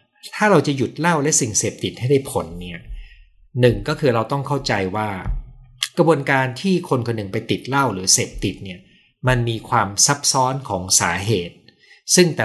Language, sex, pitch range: Thai, male, 100-135 Hz